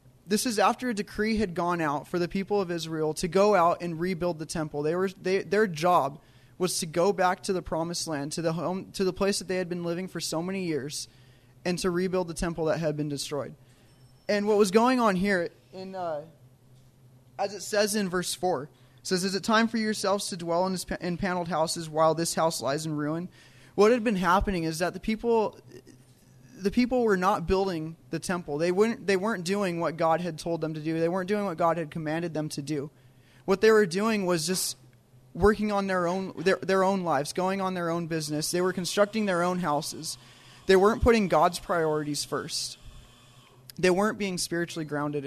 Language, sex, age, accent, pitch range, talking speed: English, male, 20-39, American, 145-195 Hz, 225 wpm